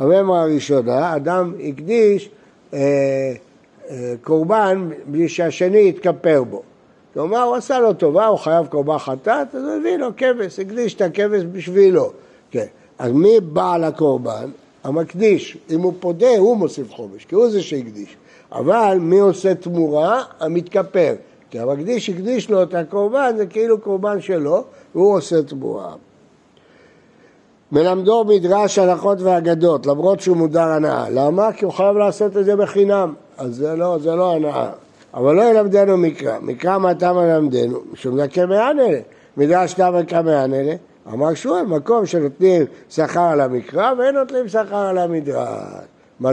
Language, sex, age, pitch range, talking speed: Hebrew, male, 60-79, 155-205 Hz, 145 wpm